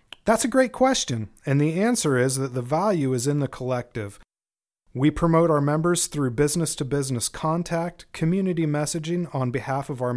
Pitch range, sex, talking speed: 120-160 Hz, male, 175 wpm